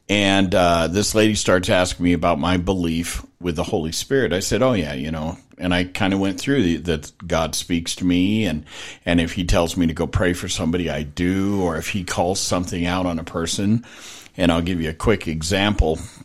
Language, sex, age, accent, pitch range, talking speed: English, male, 50-69, American, 85-105 Hz, 220 wpm